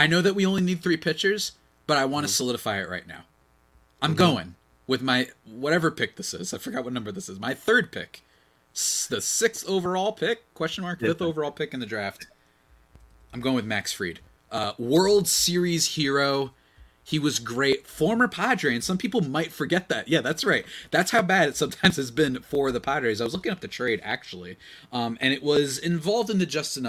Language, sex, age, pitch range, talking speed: English, male, 30-49, 100-165 Hz, 210 wpm